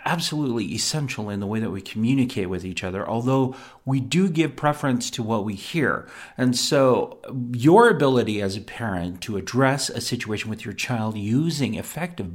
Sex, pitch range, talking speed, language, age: male, 100-135 Hz, 175 wpm, English, 50-69